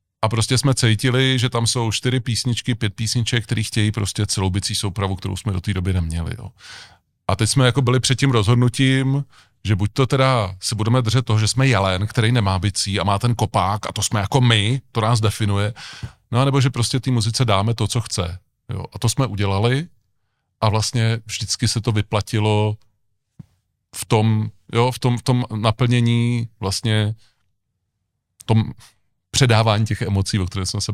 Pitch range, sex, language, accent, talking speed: 100-120 Hz, male, Czech, native, 190 wpm